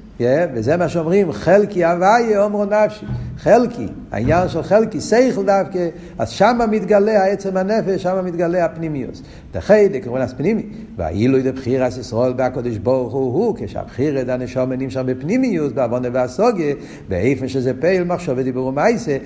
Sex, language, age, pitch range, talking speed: male, Hebrew, 60-79, 125-185 Hz, 145 wpm